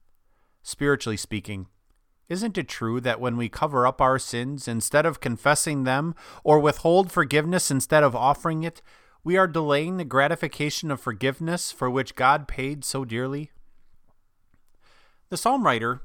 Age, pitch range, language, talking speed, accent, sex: 30-49, 115-160 Hz, English, 145 wpm, American, male